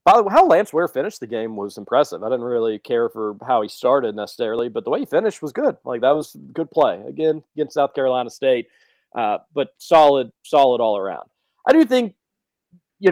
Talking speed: 215 wpm